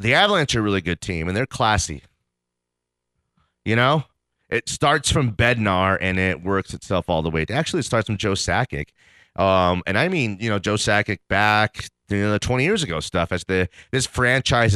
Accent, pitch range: American, 85-130 Hz